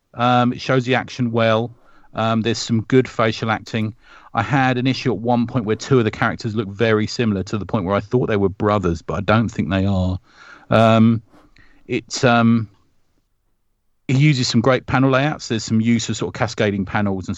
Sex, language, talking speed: male, English, 205 wpm